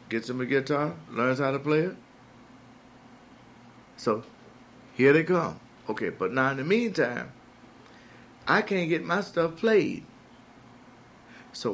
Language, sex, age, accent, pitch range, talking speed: English, male, 50-69, American, 130-170 Hz, 135 wpm